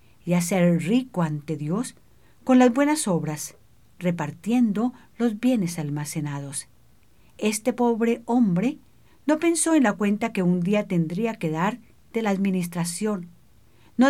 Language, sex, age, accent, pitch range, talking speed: English, female, 50-69, American, 170-230 Hz, 130 wpm